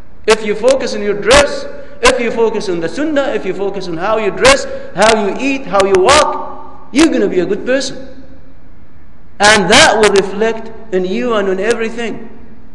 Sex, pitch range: male, 155-230 Hz